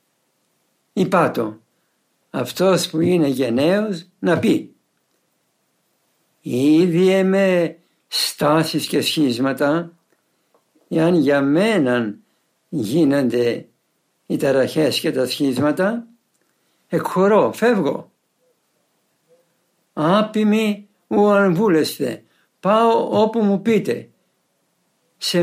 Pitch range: 140-205 Hz